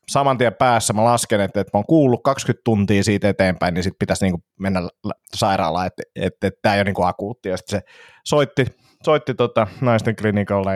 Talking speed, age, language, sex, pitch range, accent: 165 wpm, 30-49, Finnish, male, 100-120 Hz, native